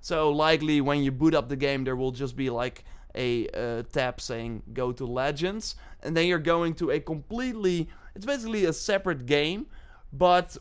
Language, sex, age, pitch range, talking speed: English, male, 20-39, 125-155 Hz, 185 wpm